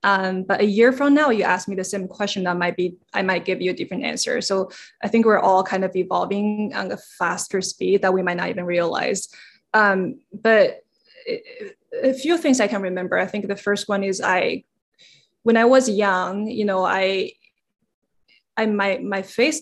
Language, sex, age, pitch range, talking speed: English, female, 20-39, 185-220 Hz, 200 wpm